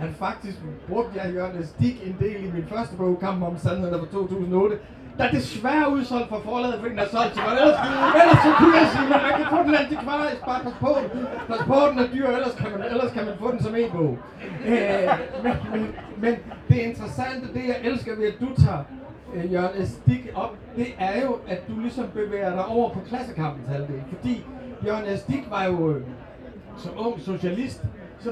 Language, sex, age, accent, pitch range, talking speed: Danish, male, 30-49, native, 190-245 Hz, 195 wpm